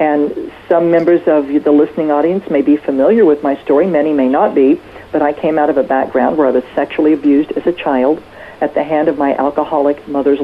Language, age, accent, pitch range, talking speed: English, 50-69, American, 145-165 Hz, 225 wpm